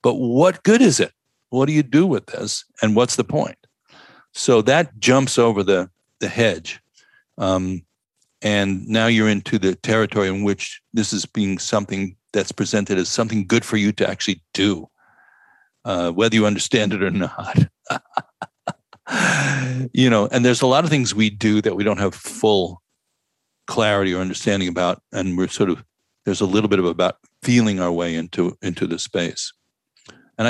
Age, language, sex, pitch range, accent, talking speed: 60-79, English, male, 95-120 Hz, American, 175 wpm